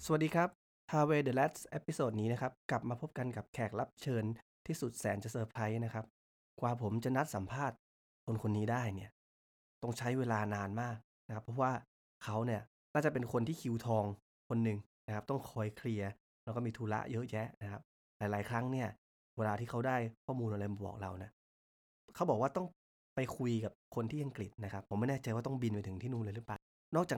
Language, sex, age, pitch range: Thai, male, 20-39, 105-150 Hz